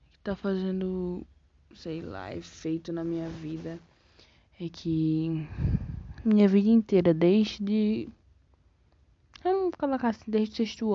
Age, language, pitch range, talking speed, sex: 20-39, Portuguese, 155-210 Hz, 120 wpm, female